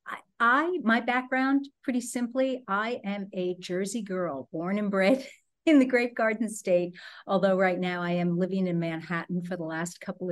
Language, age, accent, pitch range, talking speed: English, 50-69, American, 175-215 Hz, 175 wpm